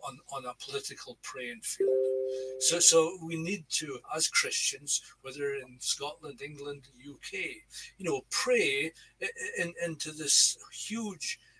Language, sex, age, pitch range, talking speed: English, male, 60-79, 145-215 Hz, 125 wpm